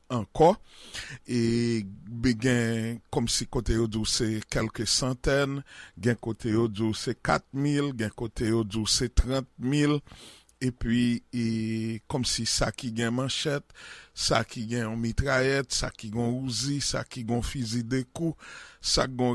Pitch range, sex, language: 115-135 Hz, male, English